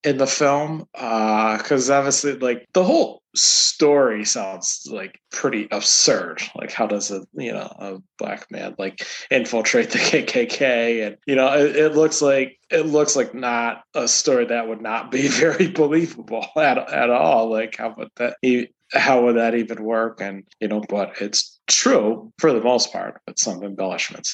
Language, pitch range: English, 110-130 Hz